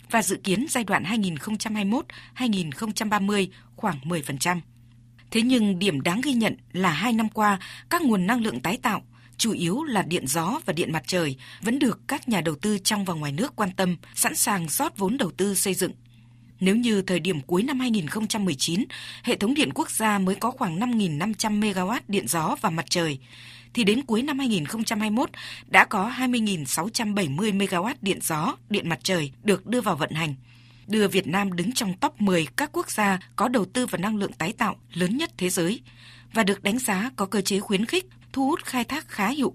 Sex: female